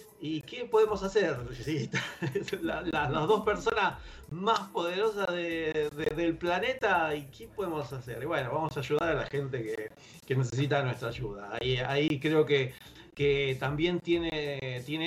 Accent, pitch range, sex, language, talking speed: Argentinian, 130-165 Hz, male, English, 165 wpm